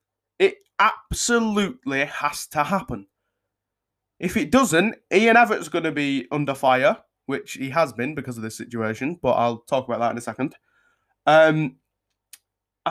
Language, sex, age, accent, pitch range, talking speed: English, male, 20-39, British, 125-180 Hz, 145 wpm